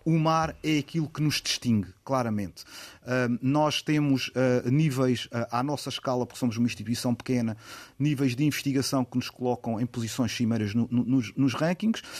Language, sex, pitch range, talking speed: Portuguese, male, 125-150 Hz, 155 wpm